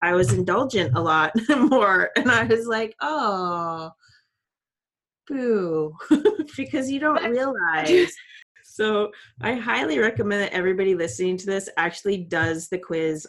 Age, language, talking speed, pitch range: 30-49, English, 130 wpm, 165-225 Hz